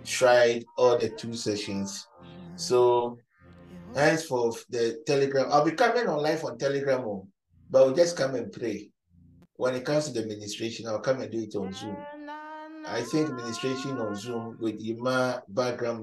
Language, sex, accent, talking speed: English, male, Nigerian, 160 wpm